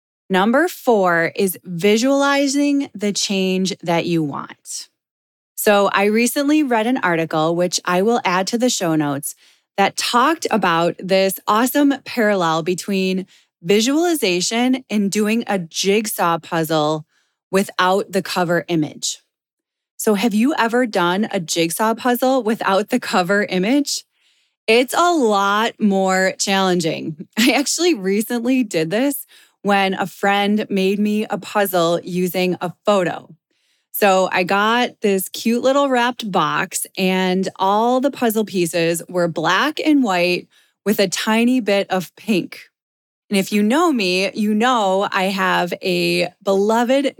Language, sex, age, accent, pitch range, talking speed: English, female, 20-39, American, 185-240 Hz, 135 wpm